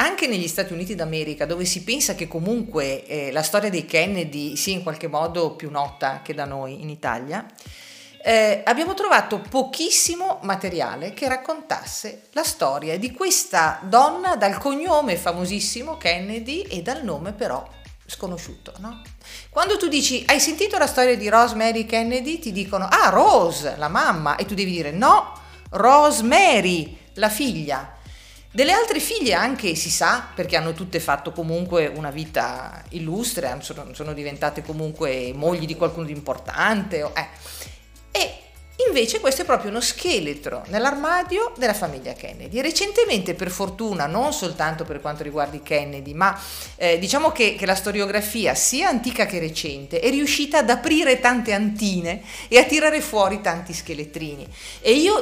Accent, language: native, Italian